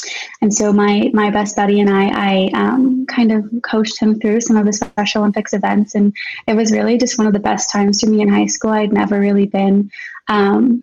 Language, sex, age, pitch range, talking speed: English, female, 20-39, 195-220 Hz, 225 wpm